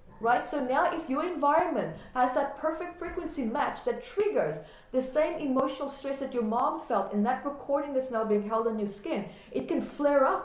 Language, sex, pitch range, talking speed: English, female, 225-285 Hz, 200 wpm